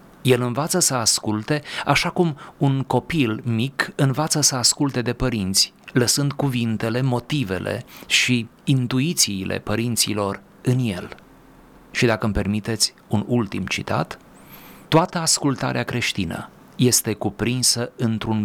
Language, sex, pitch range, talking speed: Romanian, male, 110-135 Hz, 115 wpm